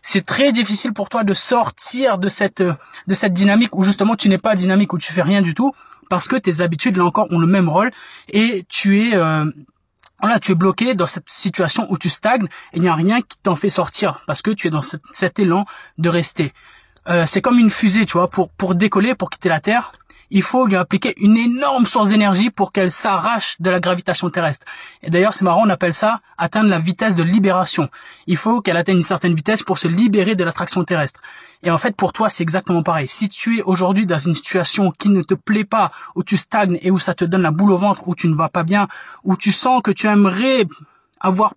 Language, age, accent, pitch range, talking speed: French, 20-39, French, 175-210 Hz, 240 wpm